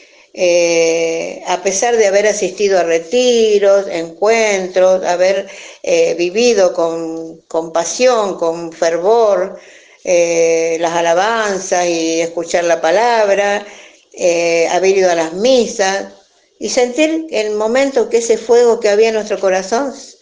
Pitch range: 175-235 Hz